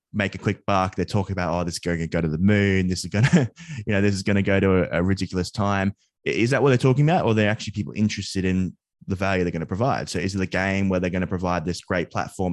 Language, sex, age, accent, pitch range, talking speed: English, male, 20-39, Australian, 90-110 Hz, 285 wpm